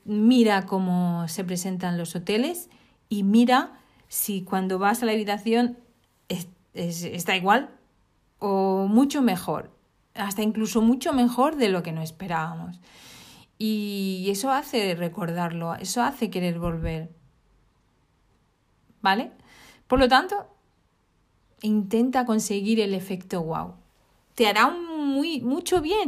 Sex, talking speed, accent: female, 120 wpm, Spanish